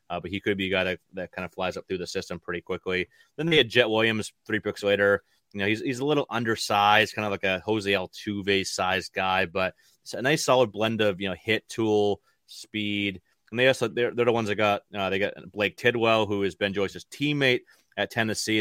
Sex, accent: male, American